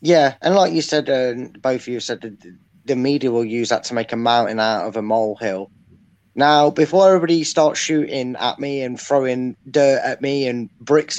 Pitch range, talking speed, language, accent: 125-170 Hz, 205 wpm, English, British